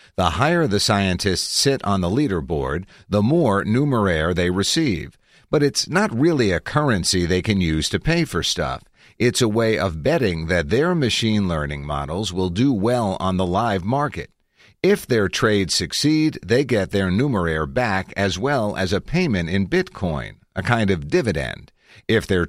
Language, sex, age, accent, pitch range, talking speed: English, male, 50-69, American, 90-120 Hz, 175 wpm